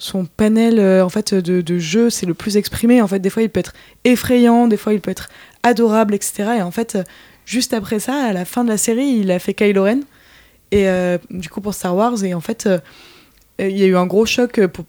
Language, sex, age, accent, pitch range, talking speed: French, female, 20-39, French, 190-225 Hz, 260 wpm